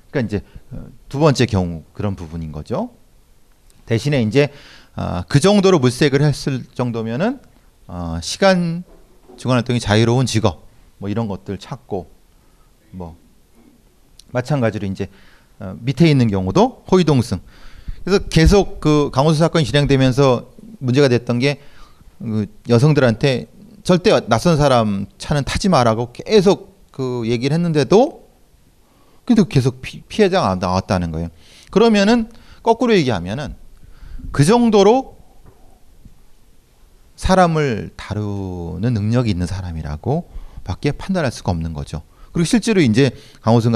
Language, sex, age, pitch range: Korean, male, 30-49, 95-155 Hz